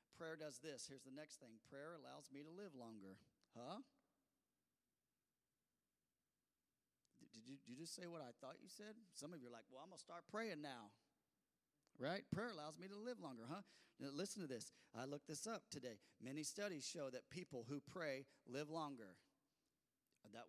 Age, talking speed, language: 40-59, 185 wpm, English